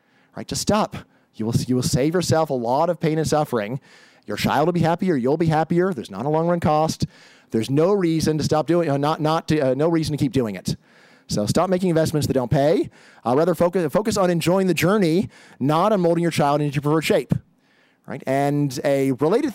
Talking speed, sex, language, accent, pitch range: 230 wpm, male, English, American, 145-175 Hz